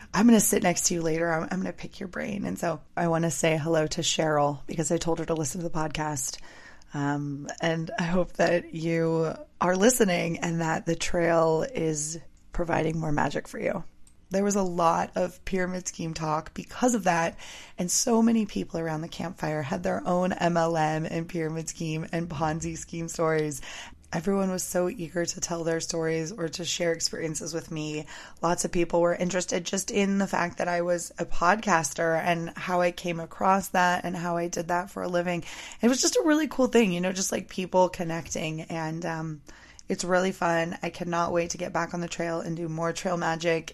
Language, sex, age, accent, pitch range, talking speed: English, female, 20-39, American, 165-185 Hz, 210 wpm